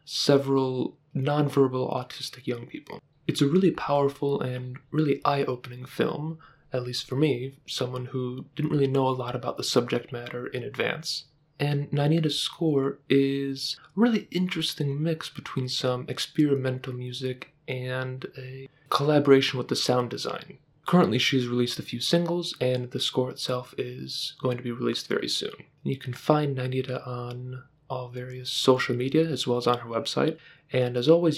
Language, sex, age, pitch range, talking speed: English, male, 20-39, 125-150 Hz, 160 wpm